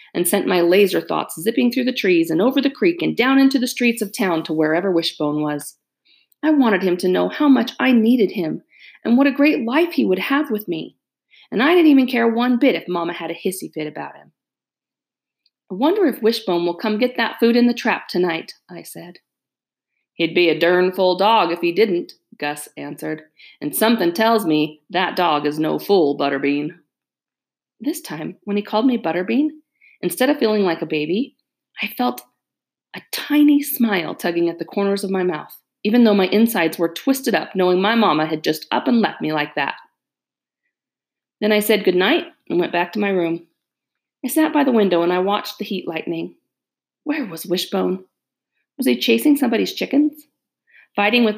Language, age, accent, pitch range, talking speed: English, 40-59, American, 175-260 Hz, 195 wpm